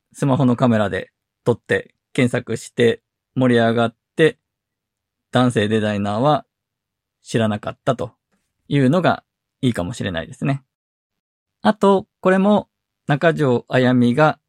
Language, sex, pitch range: Japanese, male, 110-155 Hz